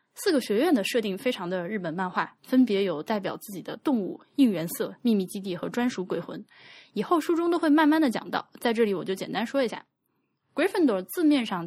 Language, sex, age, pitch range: Chinese, female, 10-29, 185-270 Hz